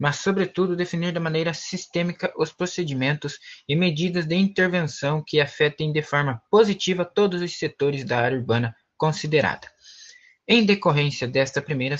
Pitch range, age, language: 135-175 Hz, 20-39, Portuguese